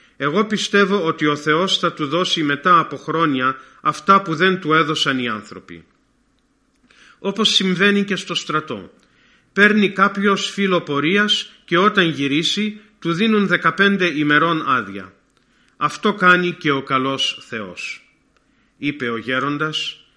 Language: Greek